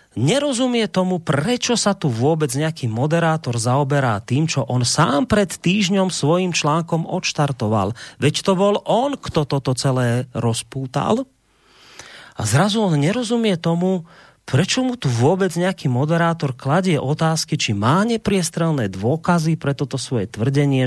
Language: Slovak